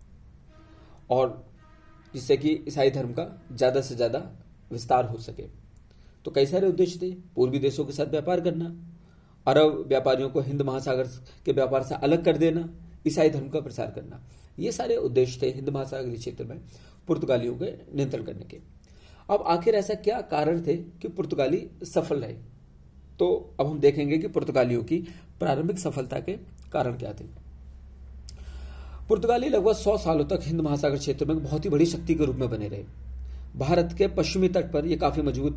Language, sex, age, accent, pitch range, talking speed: Hindi, male, 40-59, native, 125-160 Hz, 170 wpm